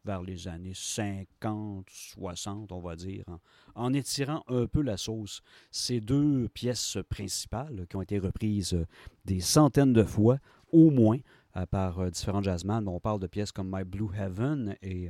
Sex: male